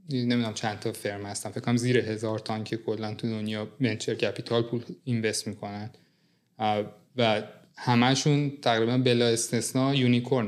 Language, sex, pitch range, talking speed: English, male, 115-135 Hz, 135 wpm